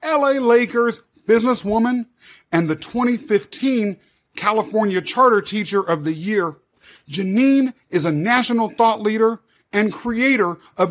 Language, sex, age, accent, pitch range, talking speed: English, male, 40-59, American, 195-245 Hz, 115 wpm